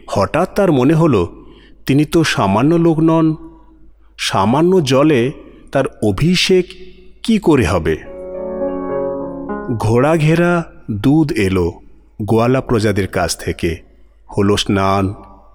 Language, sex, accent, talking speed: Bengali, male, native, 100 wpm